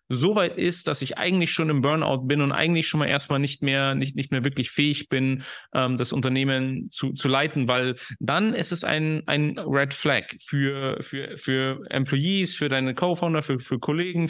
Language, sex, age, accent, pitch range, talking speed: English, male, 30-49, German, 140-165 Hz, 190 wpm